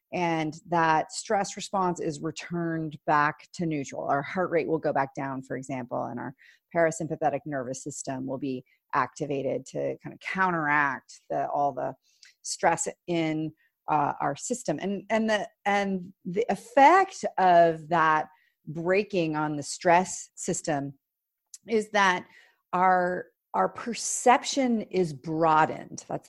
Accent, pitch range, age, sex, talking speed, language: American, 150-195 Hz, 40-59, female, 130 wpm, English